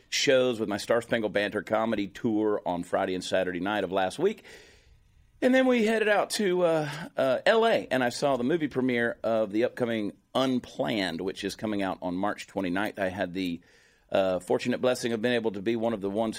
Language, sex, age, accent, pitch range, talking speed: English, male, 40-59, American, 95-125 Hz, 210 wpm